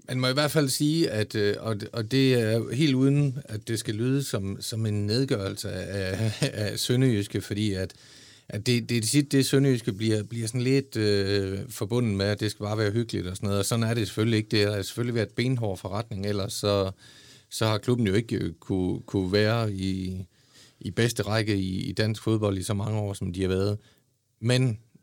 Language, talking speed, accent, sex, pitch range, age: Danish, 205 wpm, native, male, 100-125 Hz, 40-59